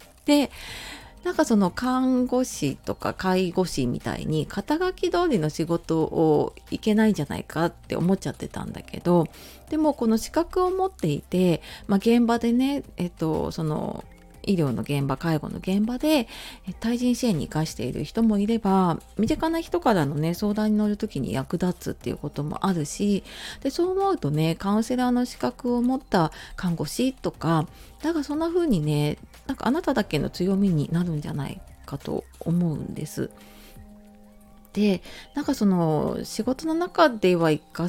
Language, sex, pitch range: Japanese, female, 165-250 Hz